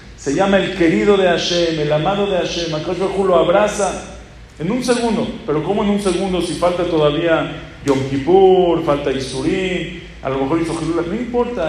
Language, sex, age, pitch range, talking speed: English, male, 40-59, 140-185 Hz, 175 wpm